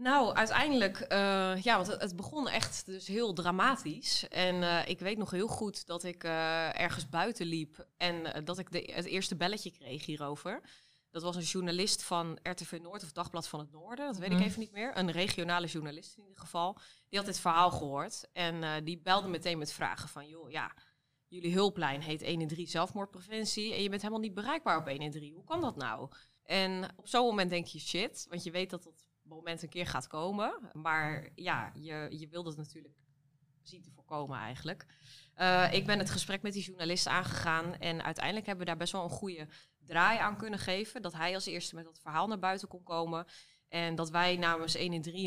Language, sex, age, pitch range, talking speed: Dutch, female, 20-39, 160-190 Hz, 215 wpm